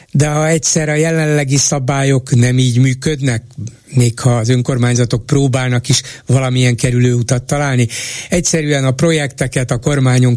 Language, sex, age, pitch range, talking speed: Hungarian, male, 60-79, 120-145 Hz, 140 wpm